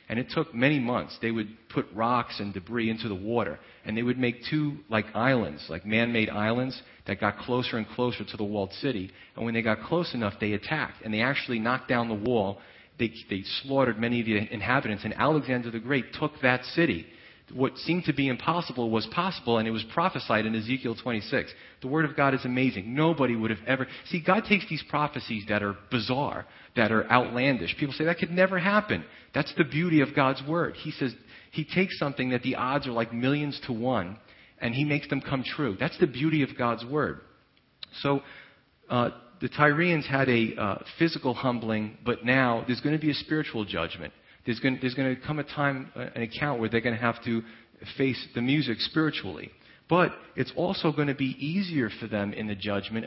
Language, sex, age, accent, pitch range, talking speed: English, male, 40-59, American, 110-145 Hz, 205 wpm